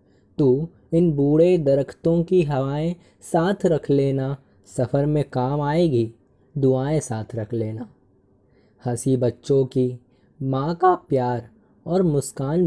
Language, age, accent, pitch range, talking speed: Hindi, 20-39, native, 125-155 Hz, 120 wpm